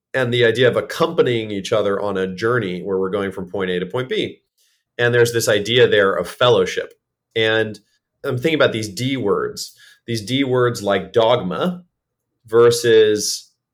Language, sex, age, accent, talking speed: English, male, 40-59, American, 170 wpm